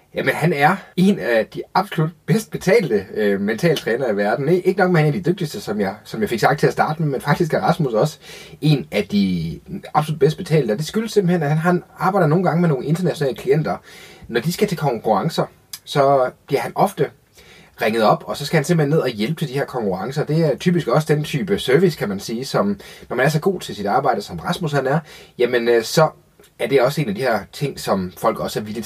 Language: Danish